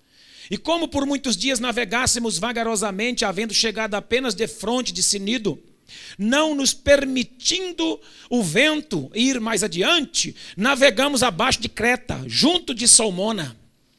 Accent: Brazilian